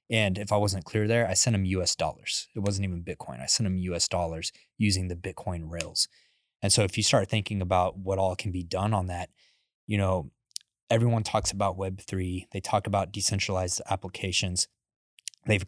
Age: 20-39